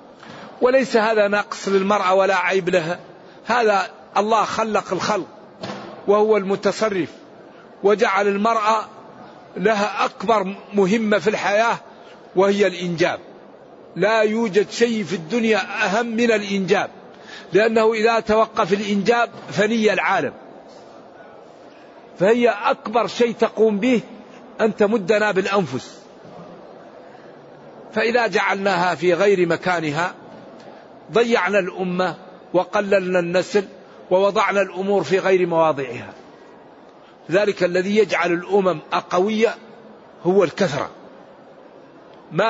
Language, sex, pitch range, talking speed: Arabic, male, 180-220 Hz, 95 wpm